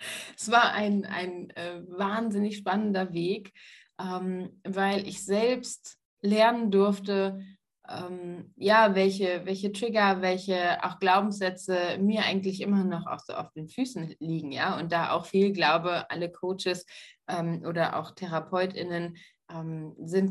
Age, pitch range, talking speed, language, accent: 20-39, 170-200 Hz, 135 wpm, German, German